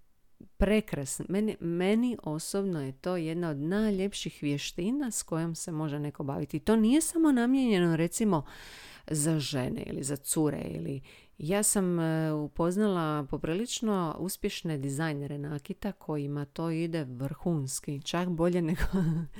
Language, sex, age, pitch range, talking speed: Croatian, female, 40-59, 145-195 Hz, 135 wpm